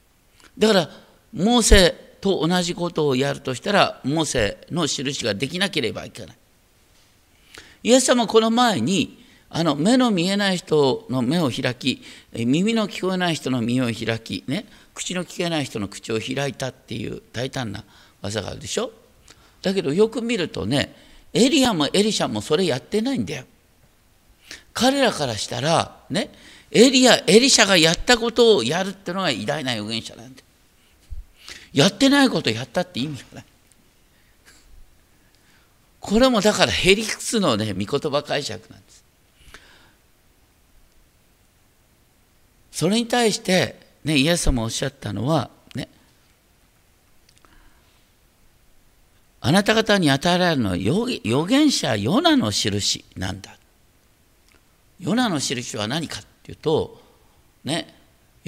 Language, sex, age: Japanese, male, 50-69